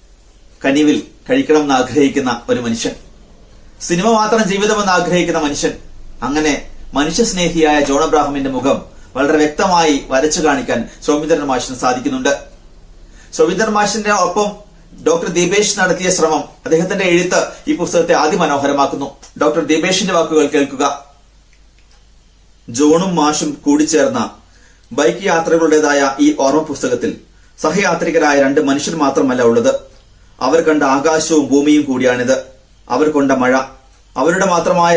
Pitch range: 135-180 Hz